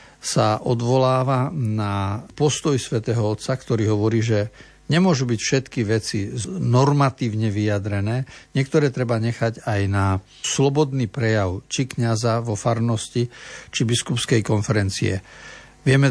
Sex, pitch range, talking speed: male, 105-130 Hz, 110 wpm